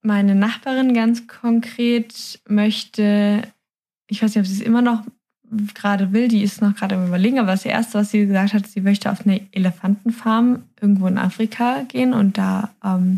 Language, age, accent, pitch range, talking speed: German, 10-29, German, 195-225 Hz, 180 wpm